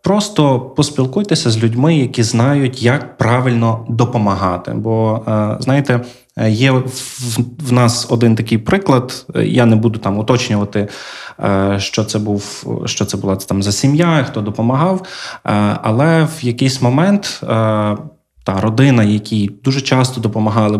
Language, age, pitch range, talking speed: Ukrainian, 20-39, 110-135 Hz, 125 wpm